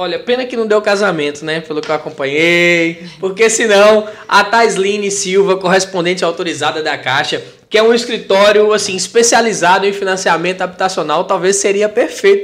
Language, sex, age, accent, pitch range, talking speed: Portuguese, male, 20-39, Brazilian, 175-225 Hz, 160 wpm